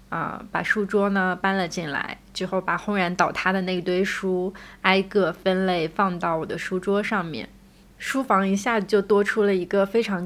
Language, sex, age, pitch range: Chinese, female, 20-39, 180-210 Hz